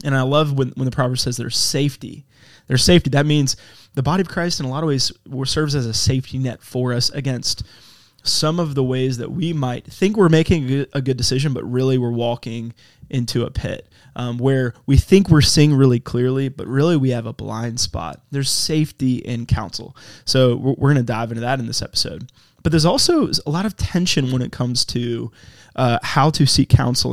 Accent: American